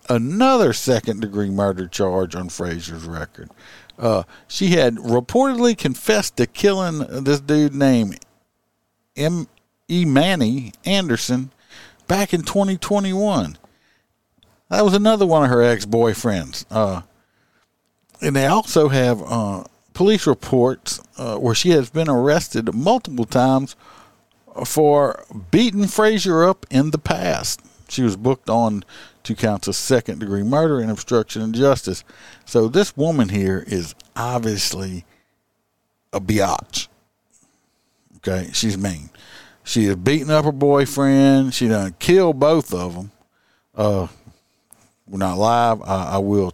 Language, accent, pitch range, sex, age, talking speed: English, American, 100-145 Hz, male, 50-69, 125 wpm